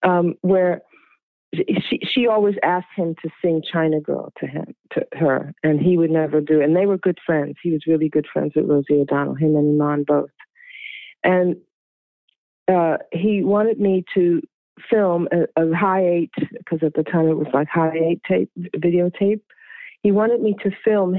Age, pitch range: 50-69, 155-185 Hz